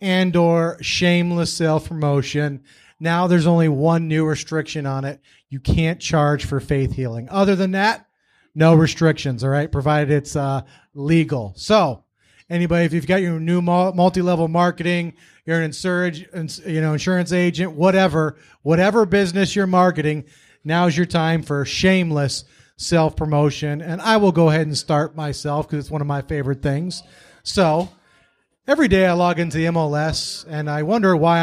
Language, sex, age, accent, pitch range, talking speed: English, male, 30-49, American, 150-180 Hz, 165 wpm